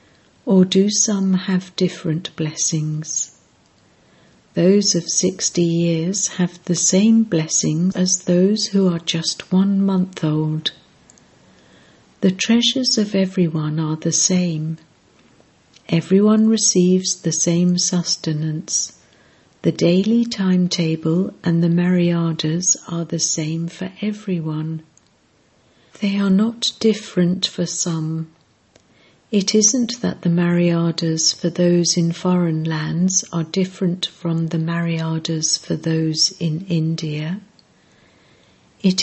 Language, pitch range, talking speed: English, 165-195 Hz, 110 wpm